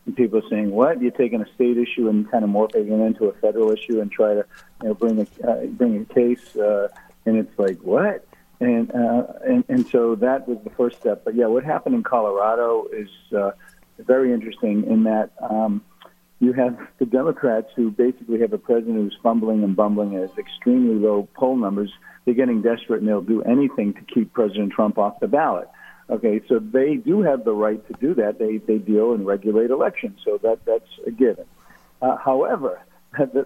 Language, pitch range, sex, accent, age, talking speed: English, 110-185 Hz, male, American, 50-69, 205 wpm